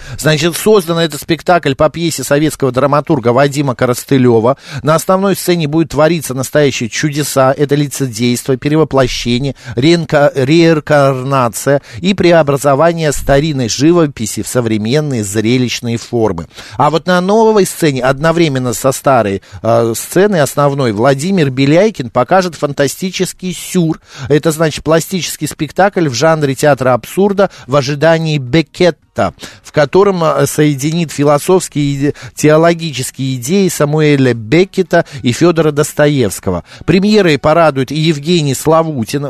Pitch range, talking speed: 130-165 Hz, 115 wpm